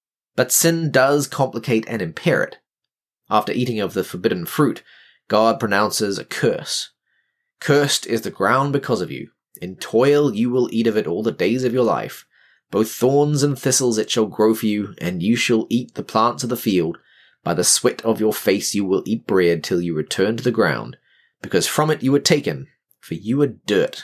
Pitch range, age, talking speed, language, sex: 100-135 Hz, 20-39, 200 wpm, English, male